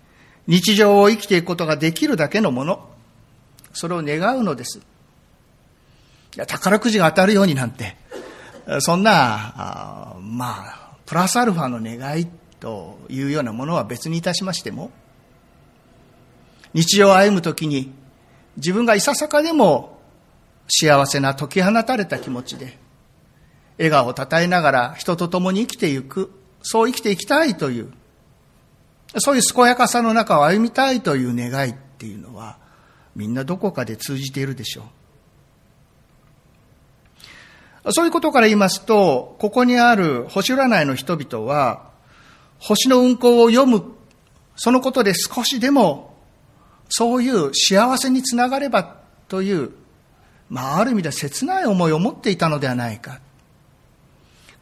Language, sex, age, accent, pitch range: Japanese, male, 50-69, native, 140-225 Hz